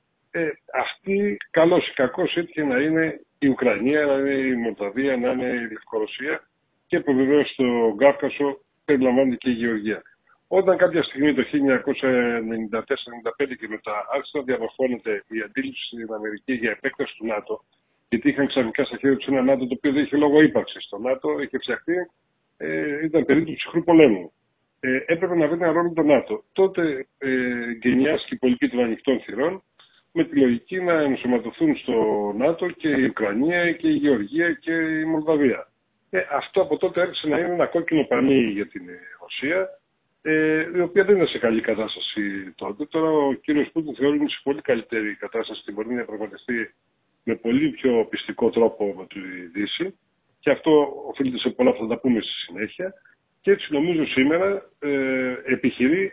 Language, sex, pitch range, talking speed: Greek, male, 120-160 Hz, 165 wpm